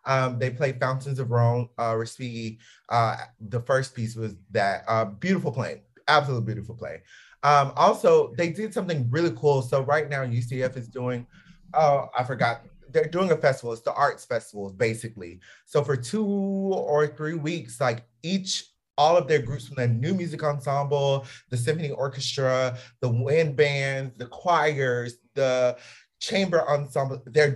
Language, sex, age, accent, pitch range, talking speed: English, male, 30-49, American, 120-155 Hz, 160 wpm